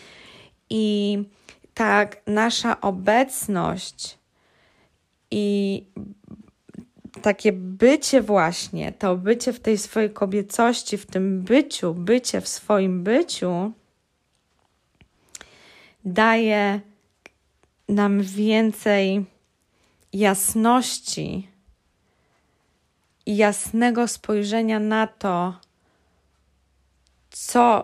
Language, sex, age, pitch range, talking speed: Polish, female, 20-39, 180-215 Hz, 65 wpm